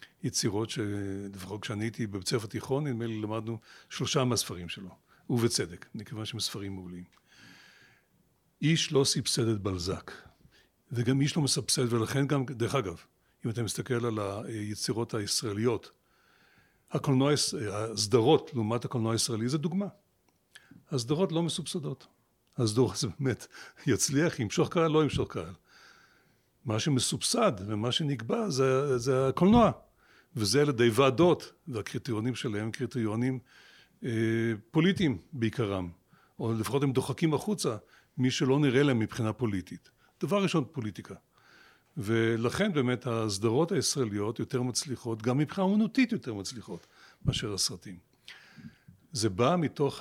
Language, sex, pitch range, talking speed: Hebrew, male, 110-140 Hz, 125 wpm